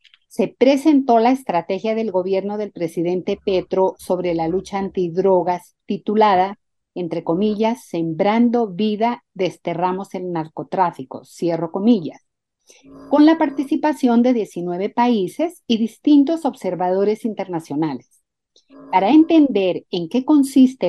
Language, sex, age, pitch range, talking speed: Spanish, female, 50-69, 180-245 Hz, 110 wpm